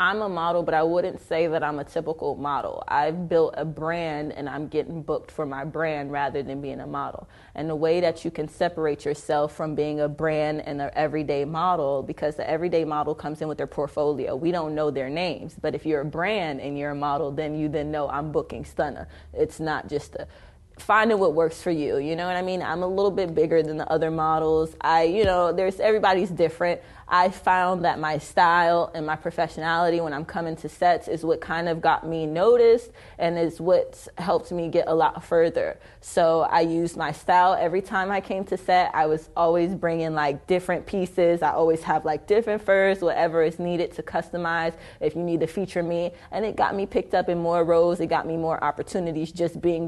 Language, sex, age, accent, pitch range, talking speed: English, female, 20-39, American, 155-175 Hz, 220 wpm